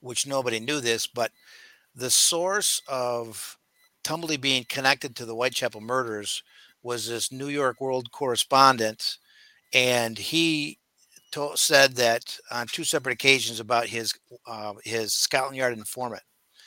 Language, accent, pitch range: English, American, 115-140 Hz